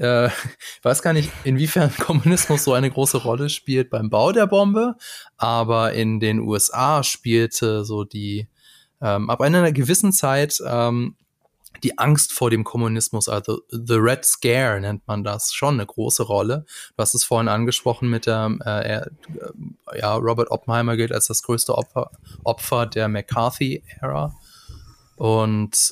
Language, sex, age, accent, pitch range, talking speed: German, male, 20-39, German, 110-135 Hz, 150 wpm